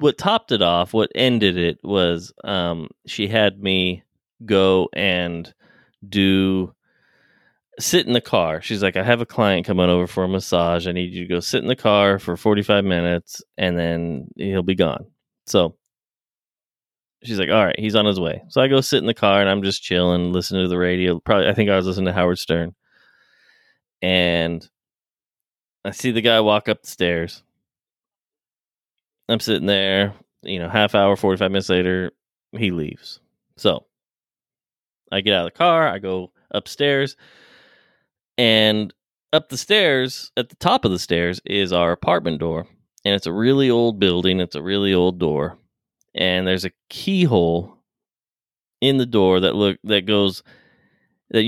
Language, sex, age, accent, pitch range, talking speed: English, male, 20-39, American, 90-110 Hz, 175 wpm